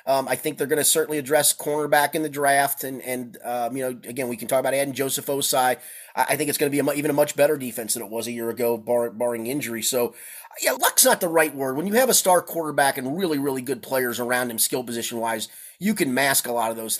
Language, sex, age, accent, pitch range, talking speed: English, male, 30-49, American, 130-205 Hz, 270 wpm